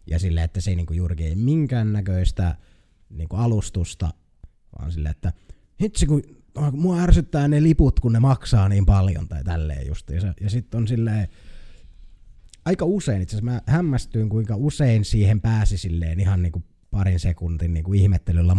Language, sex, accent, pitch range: Finnish, male, native, 85-110 Hz